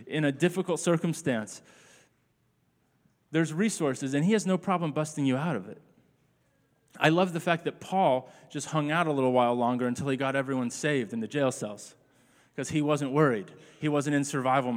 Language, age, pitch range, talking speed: English, 30-49, 135-175 Hz, 185 wpm